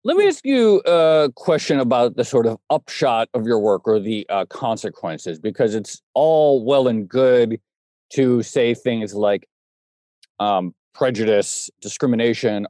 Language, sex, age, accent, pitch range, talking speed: English, male, 40-59, American, 110-140 Hz, 145 wpm